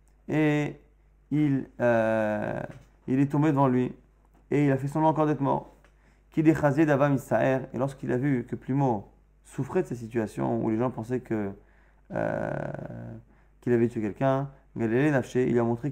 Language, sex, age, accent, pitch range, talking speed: French, male, 30-49, French, 115-145 Hz, 145 wpm